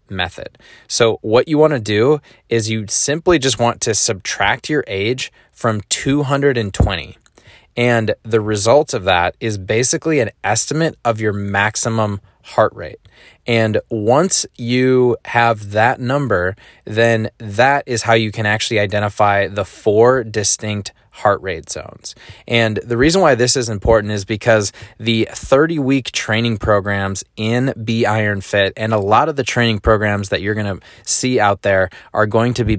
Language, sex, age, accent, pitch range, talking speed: English, male, 20-39, American, 100-120 Hz, 160 wpm